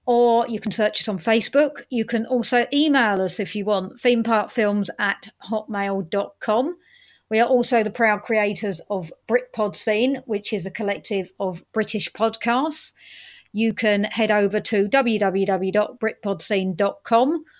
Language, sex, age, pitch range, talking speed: English, female, 40-59, 205-245 Hz, 135 wpm